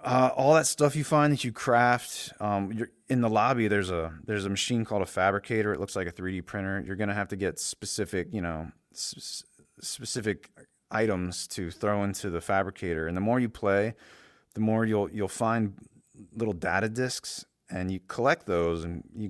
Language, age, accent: English, 30-49, American